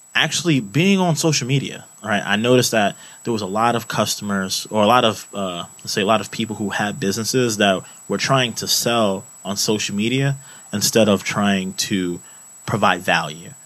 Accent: American